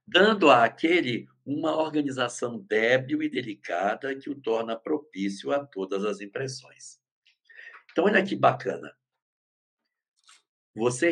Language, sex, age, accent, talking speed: Portuguese, male, 60-79, Brazilian, 110 wpm